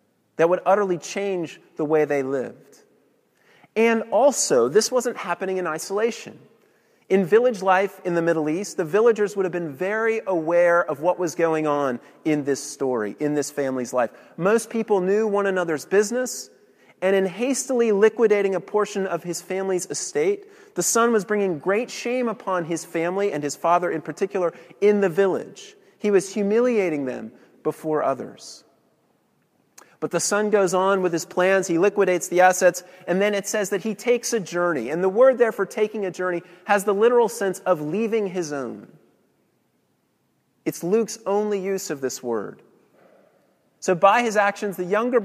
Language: English